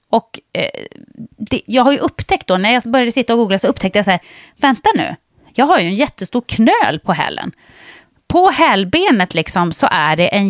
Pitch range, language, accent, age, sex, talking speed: 180-240 Hz, English, Swedish, 30-49, female, 205 wpm